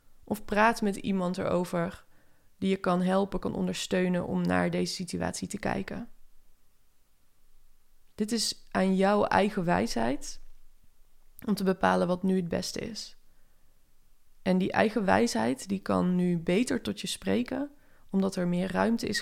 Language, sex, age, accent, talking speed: Dutch, female, 20-39, Dutch, 145 wpm